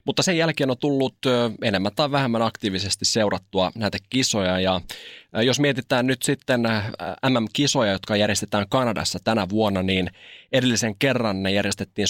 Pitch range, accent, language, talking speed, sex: 95-130 Hz, native, Finnish, 140 wpm, male